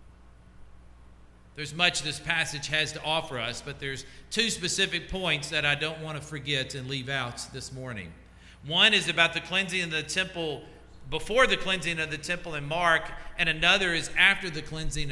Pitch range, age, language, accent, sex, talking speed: 115-175 Hz, 50-69, English, American, male, 185 wpm